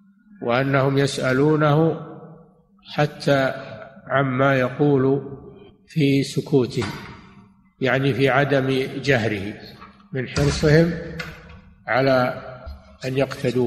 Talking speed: 70 wpm